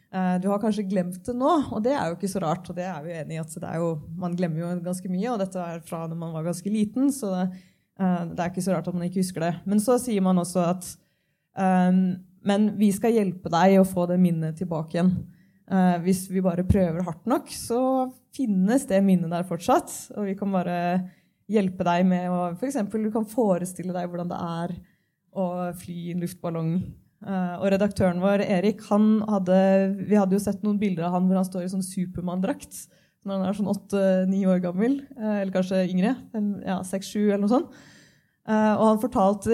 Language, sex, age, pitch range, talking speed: English, female, 20-39, 175-200 Hz, 220 wpm